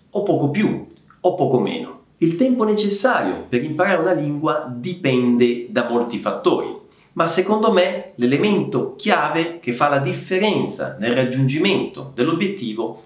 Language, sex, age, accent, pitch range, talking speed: Italian, male, 40-59, native, 140-195 Hz, 135 wpm